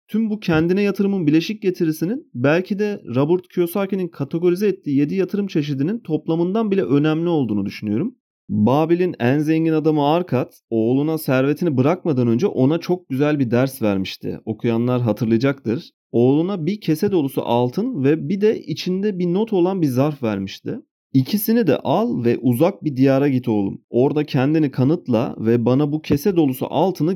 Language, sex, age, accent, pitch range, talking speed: Turkish, male, 40-59, native, 130-180 Hz, 155 wpm